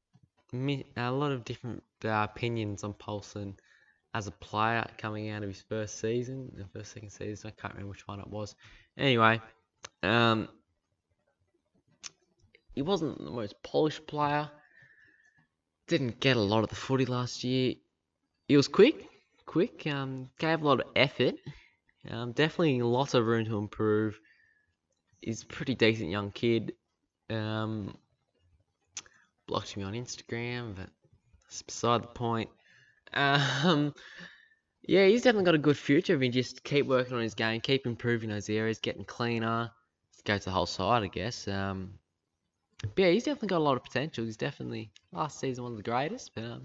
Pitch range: 110-140 Hz